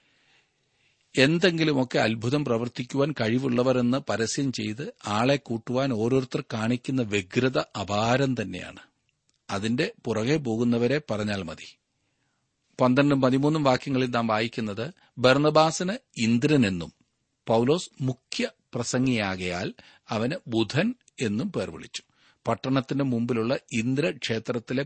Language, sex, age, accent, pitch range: Malayalam, male, 40-59, native, 110-140 Hz